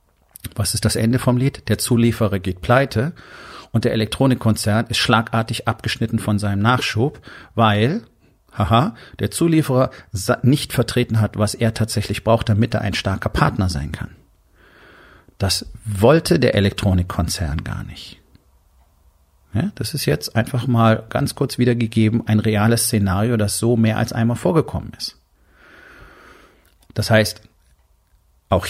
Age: 40-59